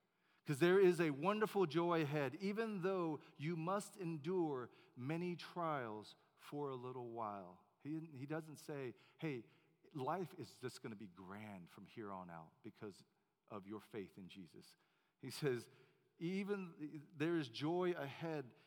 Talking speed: 150 wpm